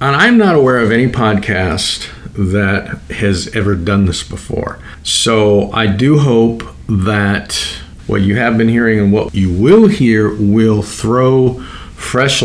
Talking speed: 150 wpm